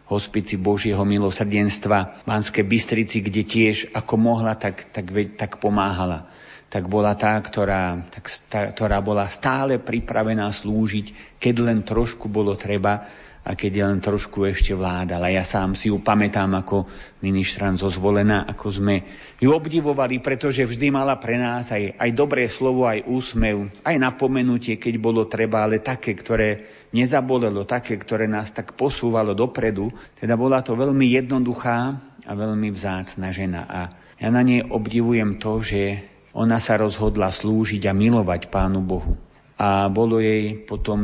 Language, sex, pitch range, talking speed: Slovak, male, 105-125 Hz, 150 wpm